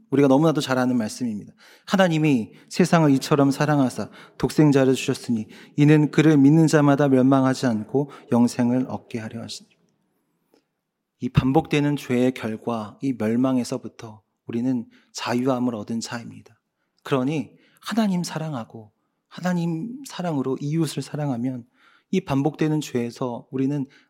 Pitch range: 120-155 Hz